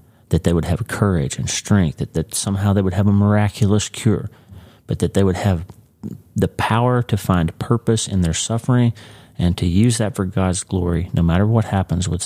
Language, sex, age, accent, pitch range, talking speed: English, male, 30-49, American, 90-110 Hz, 200 wpm